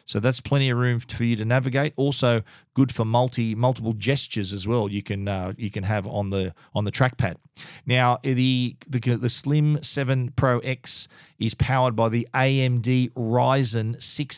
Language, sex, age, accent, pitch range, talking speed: English, male, 40-59, Australian, 110-125 Hz, 180 wpm